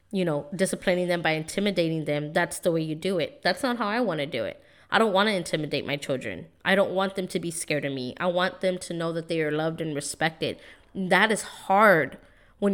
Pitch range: 165-195 Hz